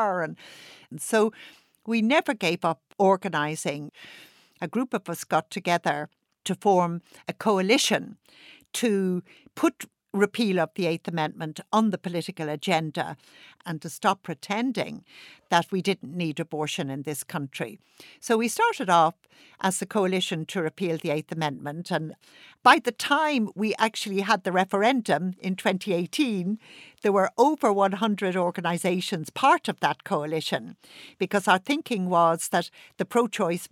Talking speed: 140 wpm